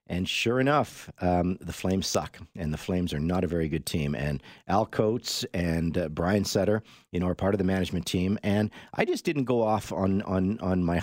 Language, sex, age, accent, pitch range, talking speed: English, male, 50-69, American, 85-105 Hz, 225 wpm